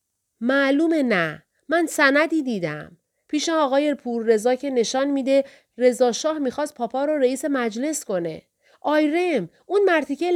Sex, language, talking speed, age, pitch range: female, Persian, 125 wpm, 30-49, 185-285 Hz